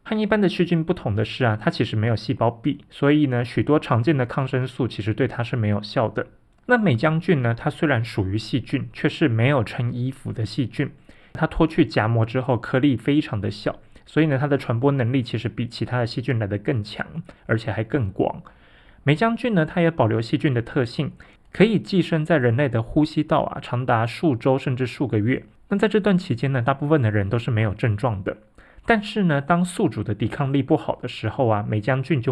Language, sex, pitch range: Chinese, male, 115-150 Hz